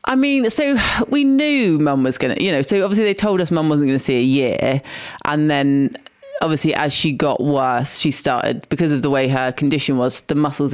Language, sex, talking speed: English, female, 230 wpm